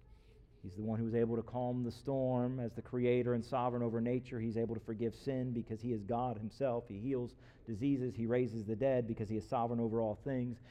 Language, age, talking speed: English, 40-59, 230 wpm